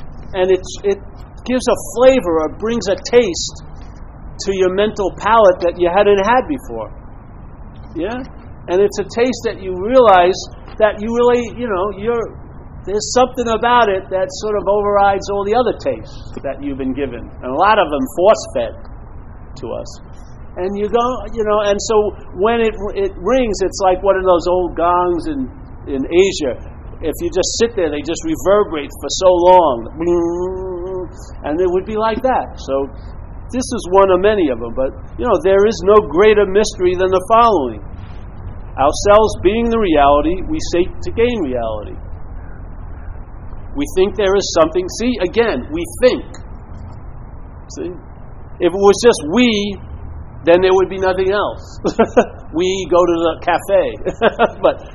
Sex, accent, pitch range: male, American, 170-230 Hz